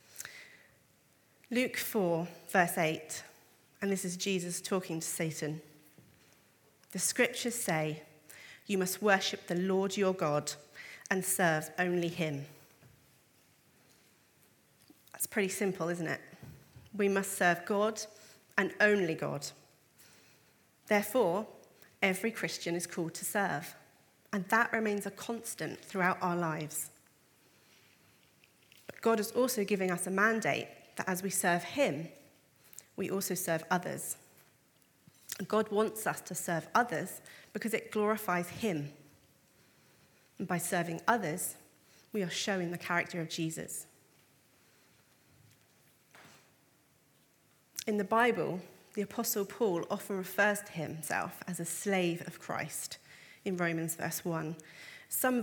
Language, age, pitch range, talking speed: English, 40-59, 165-205 Hz, 120 wpm